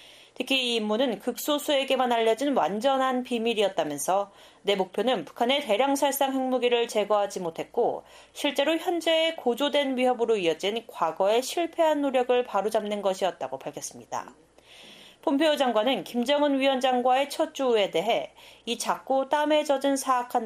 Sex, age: female, 30-49